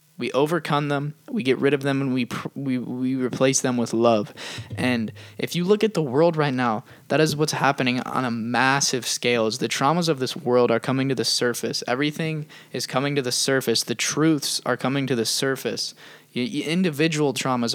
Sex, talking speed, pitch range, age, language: male, 210 wpm, 125-150 Hz, 10-29, English